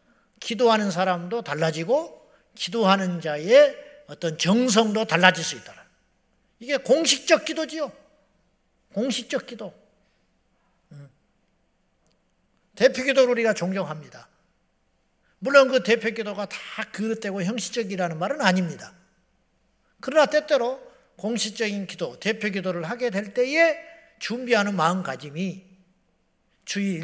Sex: male